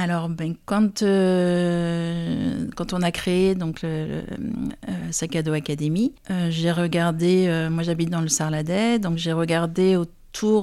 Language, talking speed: French, 150 wpm